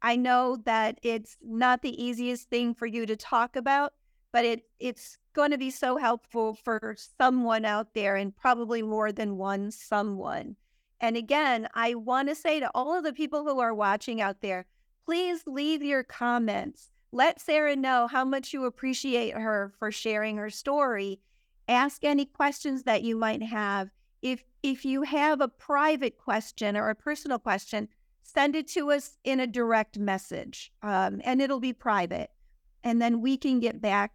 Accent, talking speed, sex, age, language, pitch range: American, 175 wpm, female, 50-69, English, 220-280 Hz